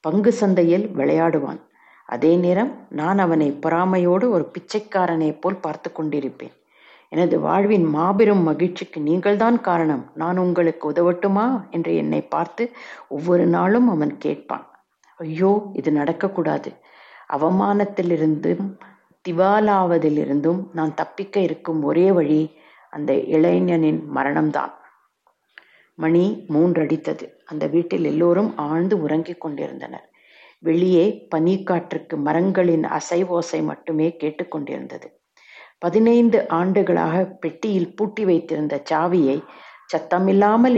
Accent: native